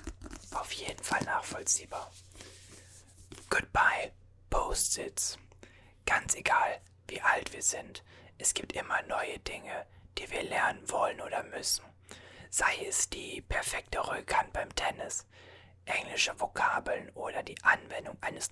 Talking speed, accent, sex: 115 wpm, German, male